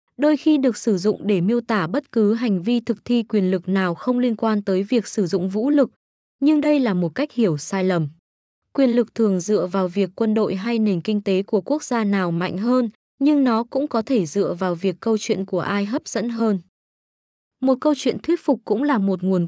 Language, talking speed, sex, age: Vietnamese, 235 wpm, female, 20-39